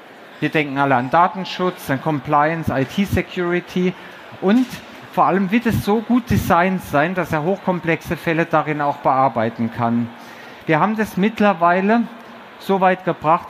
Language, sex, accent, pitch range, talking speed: German, male, German, 145-185 Hz, 140 wpm